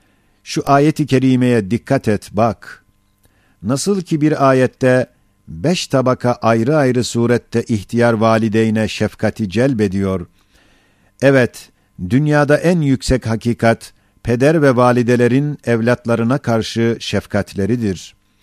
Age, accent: 50-69, native